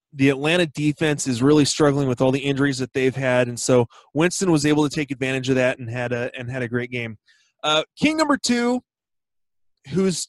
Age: 30-49